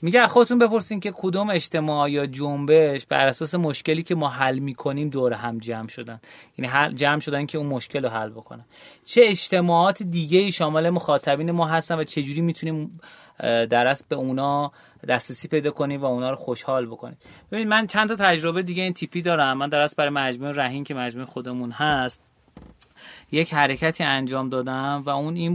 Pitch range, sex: 130-160 Hz, male